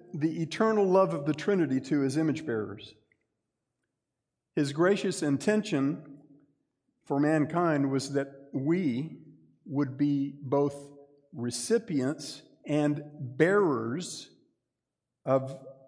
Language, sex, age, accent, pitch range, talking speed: English, male, 50-69, American, 130-160 Hz, 90 wpm